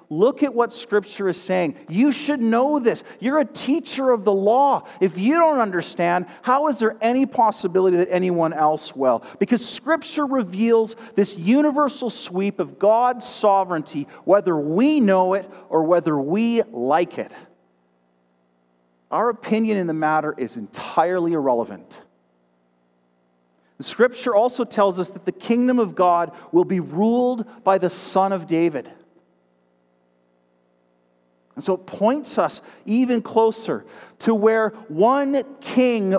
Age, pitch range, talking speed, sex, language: 40-59, 155-235 Hz, 140 wpm, male, English